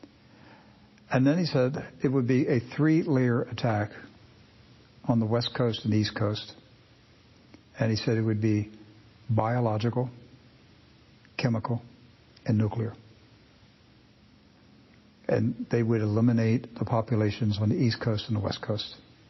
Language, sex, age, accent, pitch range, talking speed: English, male, 60-79, American, 105-120 Hz, 130 wpm